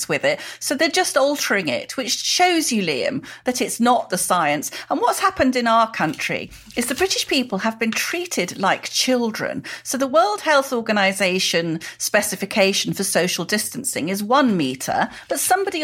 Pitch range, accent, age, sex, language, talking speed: 190-285 Hz, British, 40-59, female, English, 170 wpm